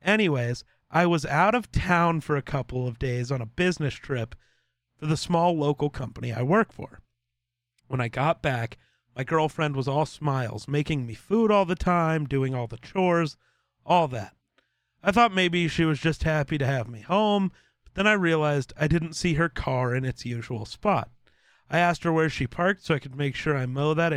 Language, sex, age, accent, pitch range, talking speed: English, male, 30-49, American, 130-170 Hz, 205 wpm